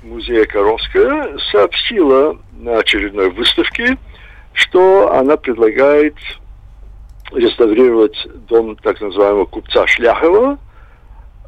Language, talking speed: Russian, 80 wpm